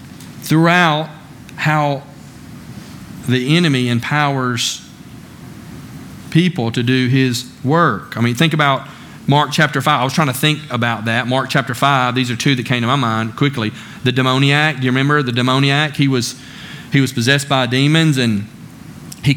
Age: 40-59